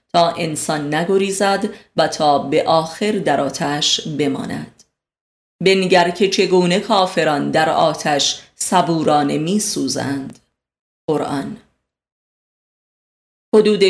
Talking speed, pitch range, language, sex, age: 90 wpm, 150-185 Hz, Persian, female, 30-49